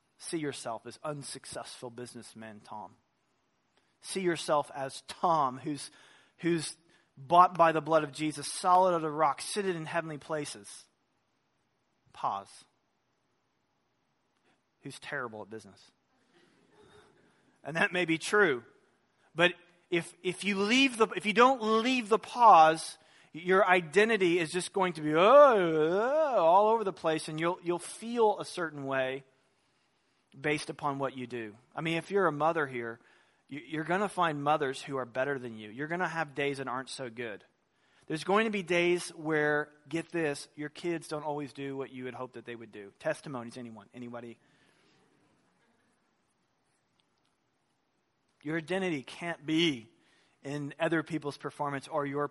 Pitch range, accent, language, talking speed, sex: 135-175 Hz, American, English, 150 wpm, male